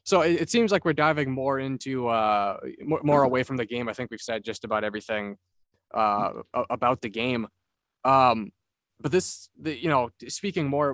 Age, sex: 20-39, male